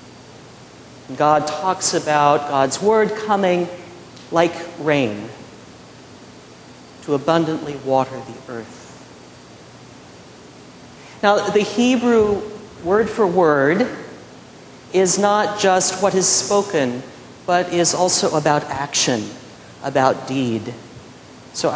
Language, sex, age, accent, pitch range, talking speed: English, male, 50-69, American, 130-170 Hz, 90 wpm